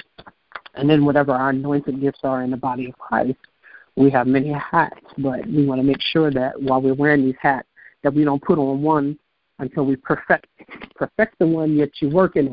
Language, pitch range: English, 135-150 Hz